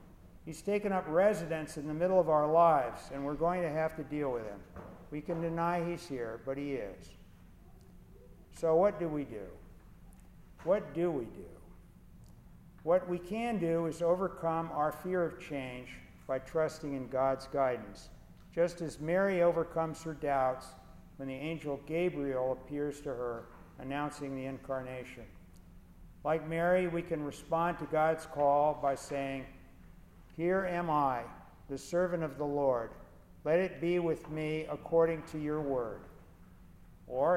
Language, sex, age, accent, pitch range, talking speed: English, male, 50-69, American, 130-165 Hz, 155 wpm